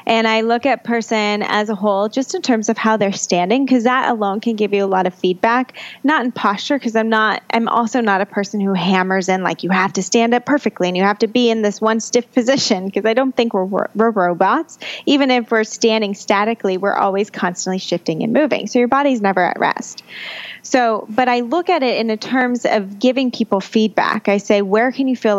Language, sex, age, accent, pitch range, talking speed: English, female, 20-39, American, 200-240 Hz, 235 wpm